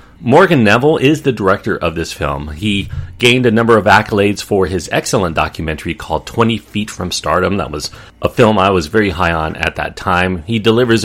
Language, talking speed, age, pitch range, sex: English, 200 wpm, 40-59, 90-115 Hz, male